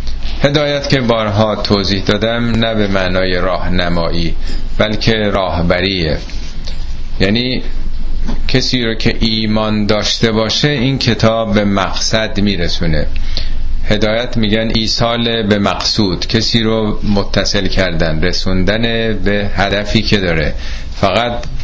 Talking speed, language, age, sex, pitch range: 105 wpm, Persian, 30-49, male, 80-110 Hz